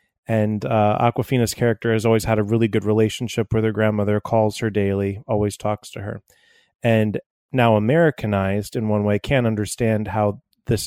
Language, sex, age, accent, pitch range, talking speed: English, male, 30-49, American, 105-120 Hz, 170 wpm